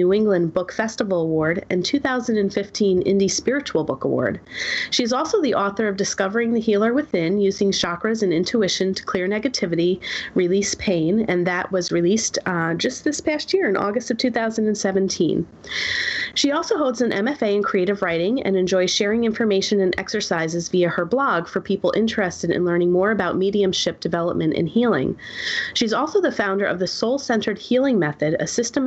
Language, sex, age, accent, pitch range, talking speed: English, female, 30-49, American, 185-235 Hz, 170 wpm